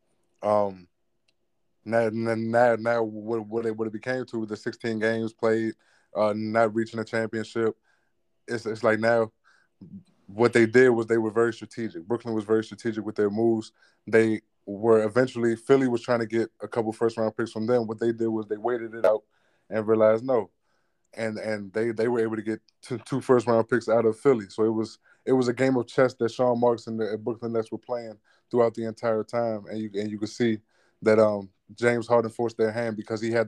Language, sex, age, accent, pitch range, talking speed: English, male, 20-39, American, 110-115 Hz, 210 wpm